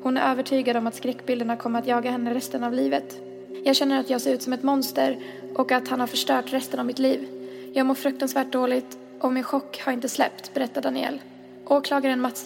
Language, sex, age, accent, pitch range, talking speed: Swedish, female, 20-39, native, 240-265 Hz, 215 wpm